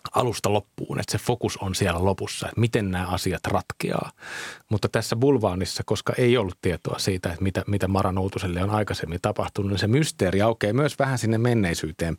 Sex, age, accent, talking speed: male, 30-49, native, 180 wpm